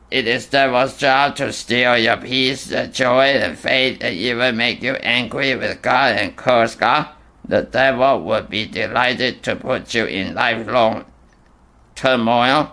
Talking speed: 155 wpm